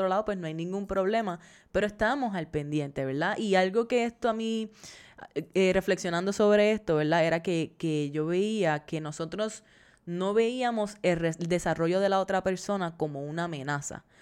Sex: female